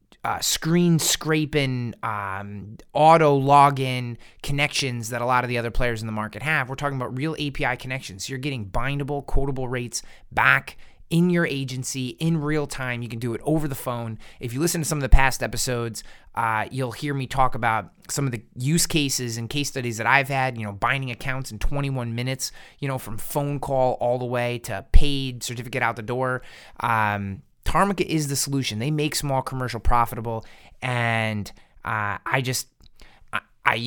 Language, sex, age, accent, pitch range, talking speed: English, male, 30-49, American, 115-140 Hz, 190 wpm